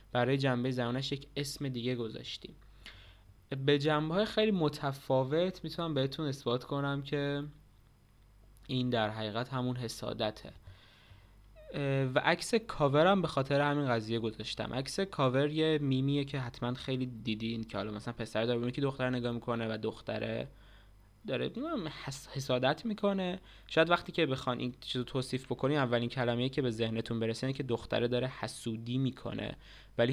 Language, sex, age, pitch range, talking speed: Persian, male, 20-39, 115-145 Hz, 145 wpm